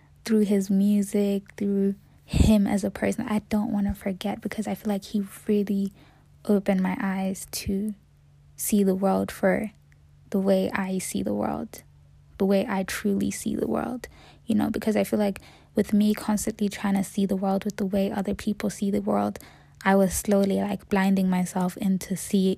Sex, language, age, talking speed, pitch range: female, English, 10-29, 185 wpm, 180-205 Hz